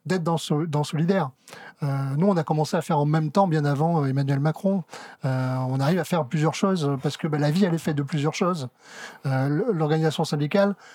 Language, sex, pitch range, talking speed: French, male, 145-180 Hz, 185 wpm